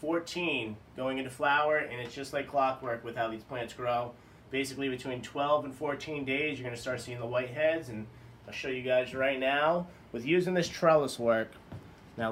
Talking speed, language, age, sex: 195 wpm, English, 30-49, male